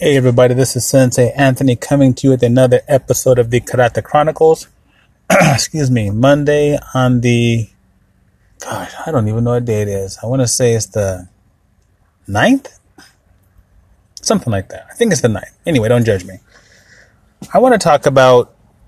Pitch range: 115-140 Hz